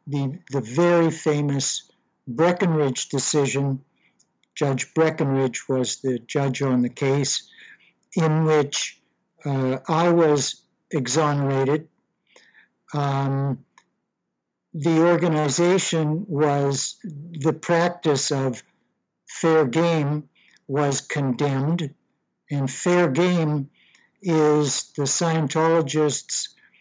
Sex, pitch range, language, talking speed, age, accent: male, 135-165 Hz, English, 85 wpm, 60-79, American